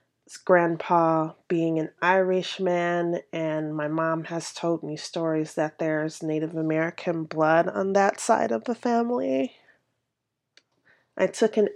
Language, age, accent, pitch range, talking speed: English, 30-49, American, 155-185 Hz, 130 wpm